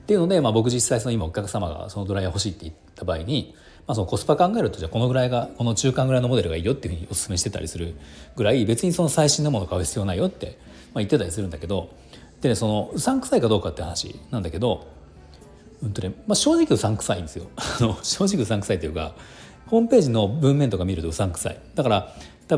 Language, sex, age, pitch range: Japanese, male, 40-59, 90-135 Hz